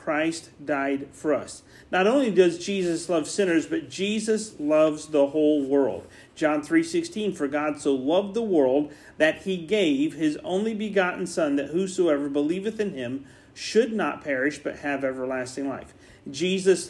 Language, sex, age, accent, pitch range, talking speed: English, male, 40-59, American, 155-200 Hz, 155 wpm